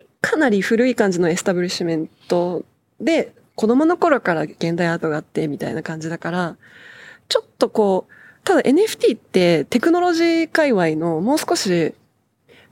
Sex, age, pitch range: female, 20-39, 175-265 Hz